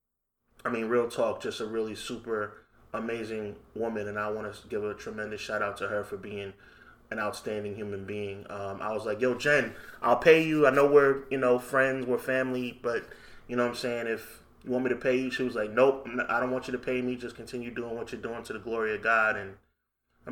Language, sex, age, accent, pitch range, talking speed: English, male, 20-39, American, 115-135 Hz, 240 wpm